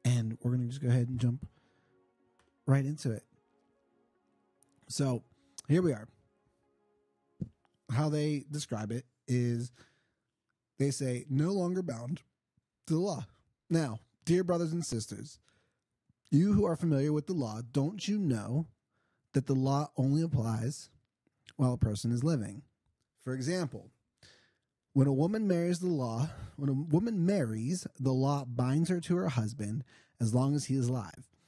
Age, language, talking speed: 30-49, English, 150 wpm